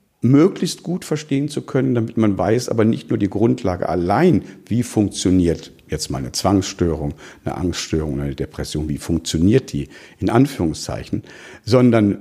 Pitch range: 90-120 Hz